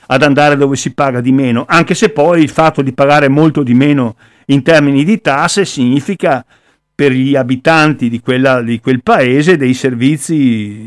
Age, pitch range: 50-69, 130-160 Hz